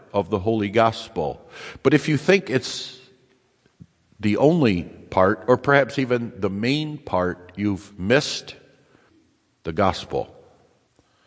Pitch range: 105-125 Hz